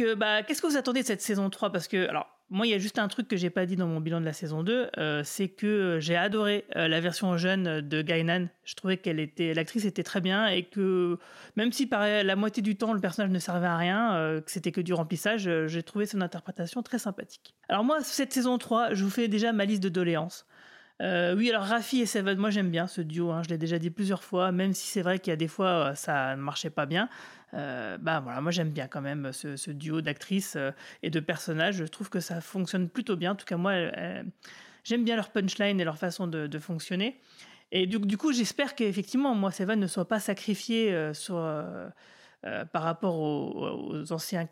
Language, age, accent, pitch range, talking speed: French, 30-49, French, 170-210 Hz, 245 wpm